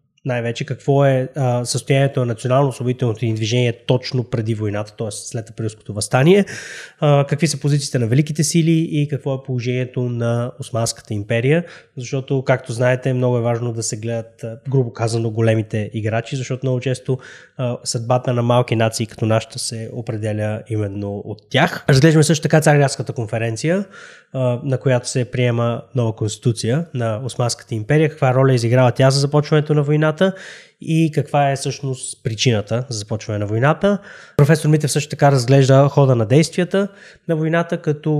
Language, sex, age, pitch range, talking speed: Bulgarian, male, 20-39, 115-150 Hz, 155 wpm